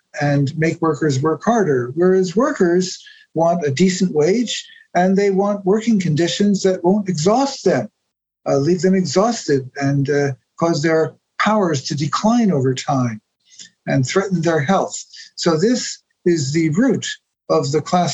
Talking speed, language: 150 wpm, English